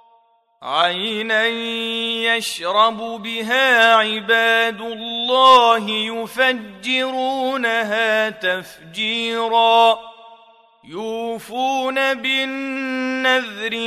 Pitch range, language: 215-260 Hz, Arabic